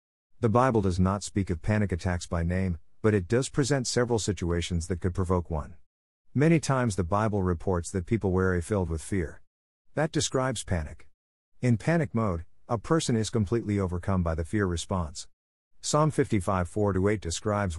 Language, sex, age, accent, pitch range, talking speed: English, male, 50-69, American, 85-115 Hz, 170 wpm